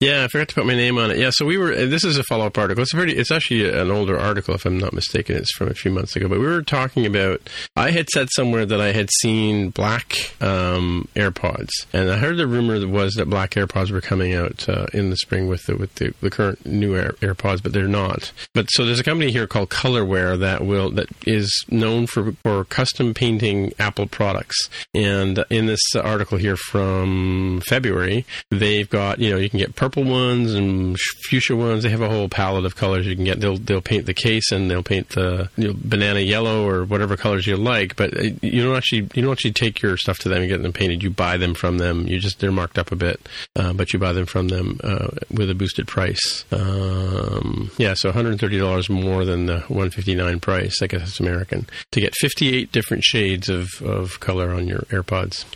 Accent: American